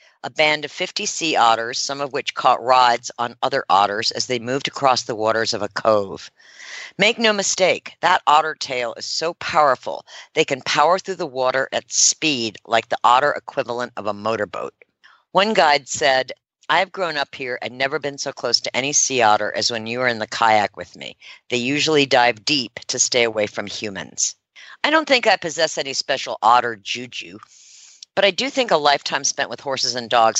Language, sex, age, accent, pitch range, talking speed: English, female, 50-69, American, 115-145 Hz, 200 wpm